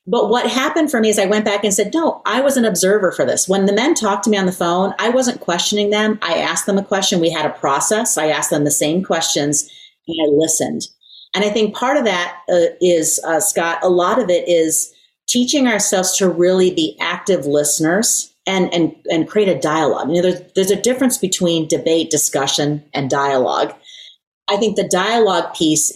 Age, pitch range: 30-49, 150-205 Hz